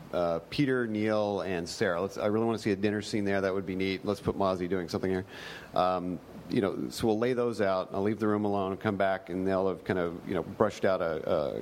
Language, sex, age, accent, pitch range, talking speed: English, male, 40-59, American, 95-115 Hz, 295 wpm